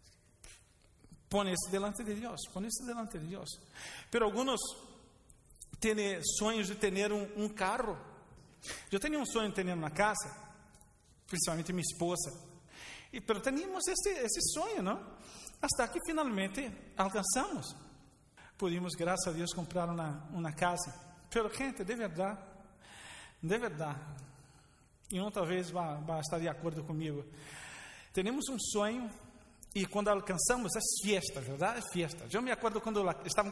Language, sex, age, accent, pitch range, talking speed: Spanish, male, 40-59, Brazilian, 165-225 Hz, 140 wpm